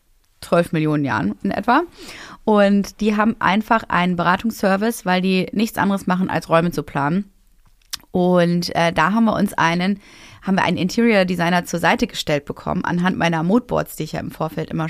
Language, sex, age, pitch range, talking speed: German, female, 20-39, 175-225 Hz, 180 wpm